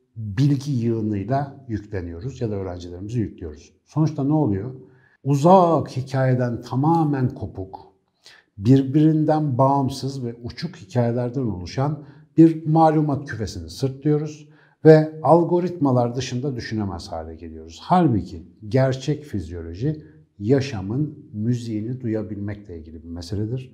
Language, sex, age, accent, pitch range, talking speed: Turkish, male, 60-79, native, 105-140 Hz, 100 wpm